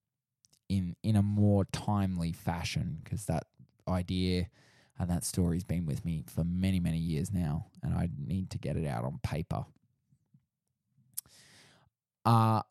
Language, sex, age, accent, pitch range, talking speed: English, male, 20-39, Australian, 90-115 Hz, 145 wpm